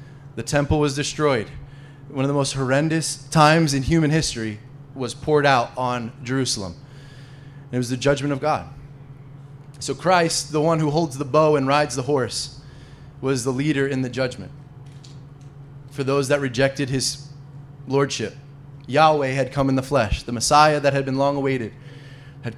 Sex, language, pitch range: male, English, 135-145 Hz